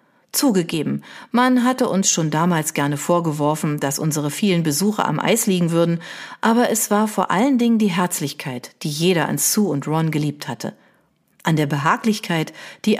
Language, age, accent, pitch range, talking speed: German, 40-59, German, 160-220 Hz, 165 wpm